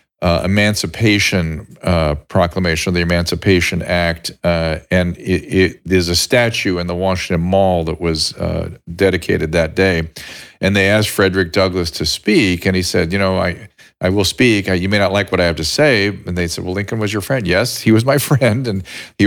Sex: male